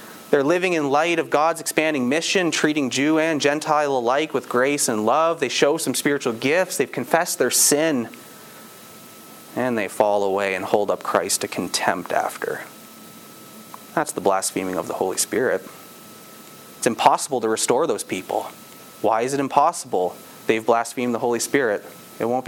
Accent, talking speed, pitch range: American, 165 wpm, 135-195 Hz